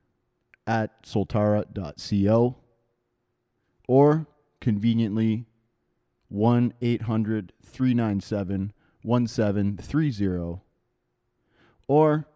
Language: English